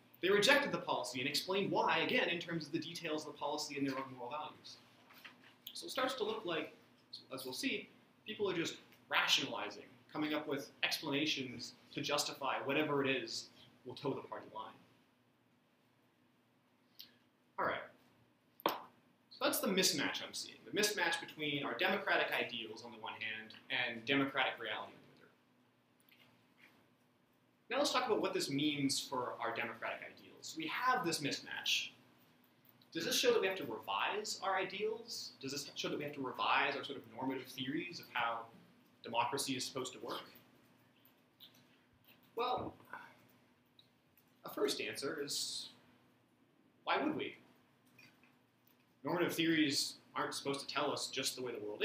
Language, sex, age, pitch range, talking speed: English, male, 30-49, 130-165 Hz, 155 wpm